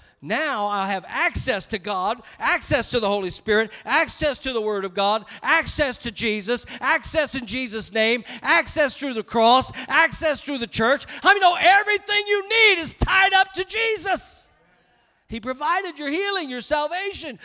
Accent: American